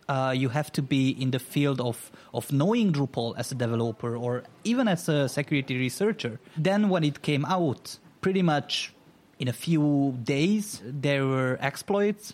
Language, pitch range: Portuguese, 125-165 Hz